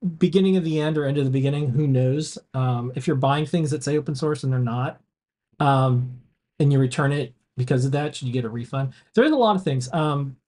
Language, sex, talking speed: English, male, 240 wpm